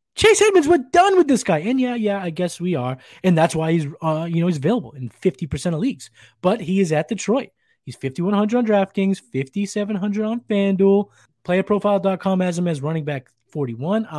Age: 20-39